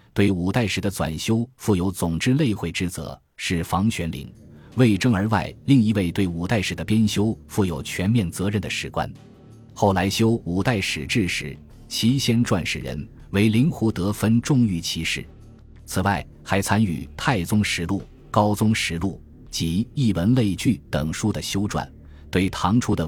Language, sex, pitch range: Chinese, male, 85-115 Hz